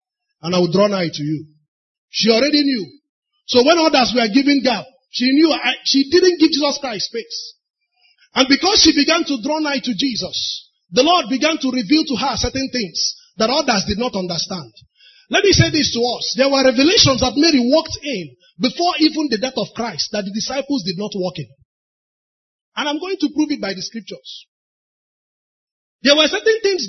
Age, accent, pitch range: 30-49, Nigerian, 215-310 Hz